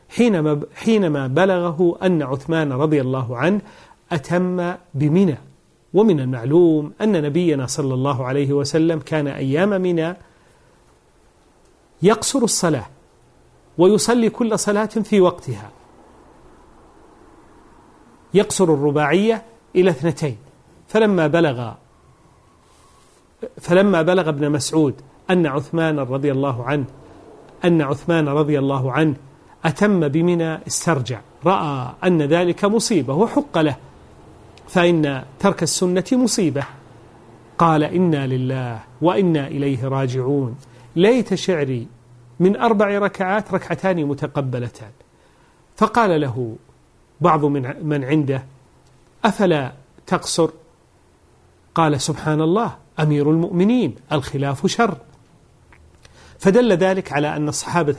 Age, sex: 40-59, male